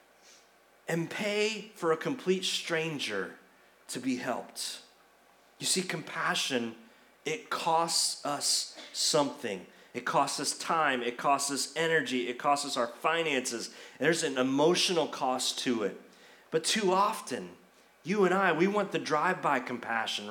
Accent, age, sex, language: American, 30-49, male, English